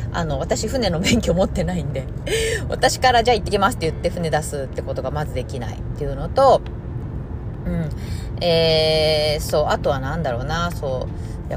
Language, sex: Japanese, female